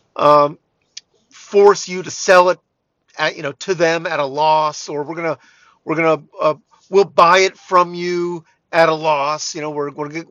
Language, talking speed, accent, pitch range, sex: English, 200 wpm, American, 155-205 Hz, male